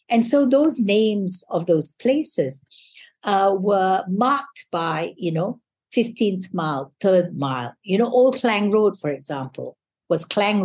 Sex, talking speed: female, 145 wpm